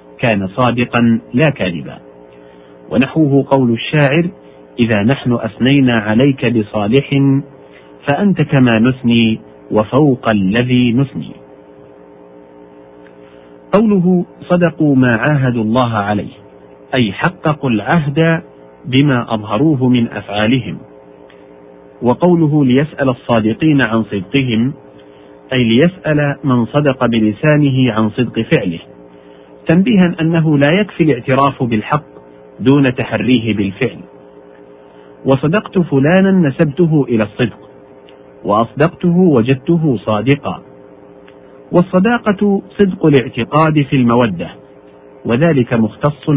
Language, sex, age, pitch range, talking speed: Arabic, male, 50-69, 105-150 Hz, 90 wpm